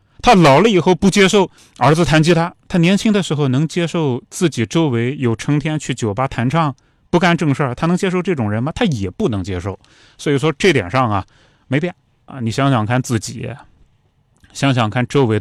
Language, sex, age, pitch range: Chinese, male, 30-49, 115-170 Hz